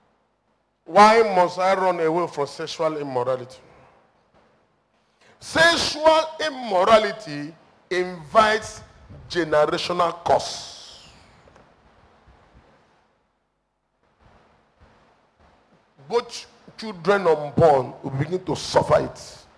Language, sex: English, male